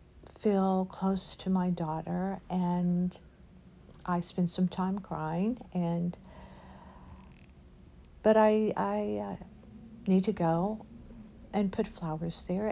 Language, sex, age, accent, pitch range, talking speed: English, female, 60-79, American, 165-200 Hz, 110 wpm